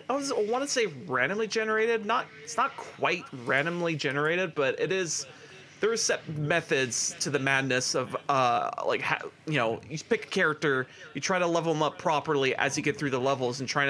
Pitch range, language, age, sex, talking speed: 140-180 Hz, English, 30-49, male, 205 wpm